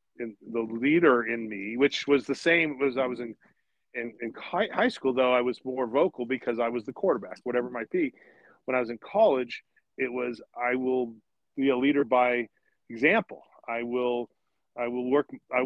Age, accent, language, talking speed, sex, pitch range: 40-59, American, English, 195 wpm, male, 120-160 Hz